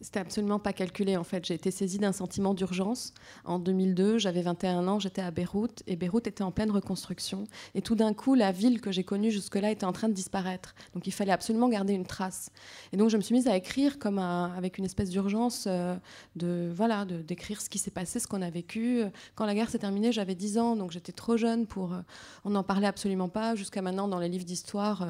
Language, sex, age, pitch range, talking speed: French, female, 20-39, 185-225 Hz, 240 wpm